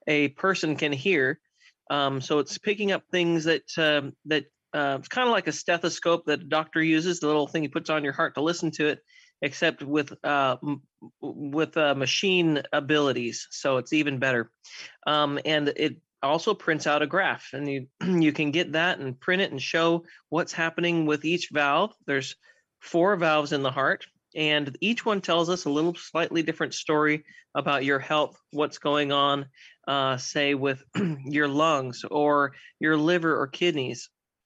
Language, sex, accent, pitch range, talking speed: English, male, American, 140-170 Hz, 180 wpm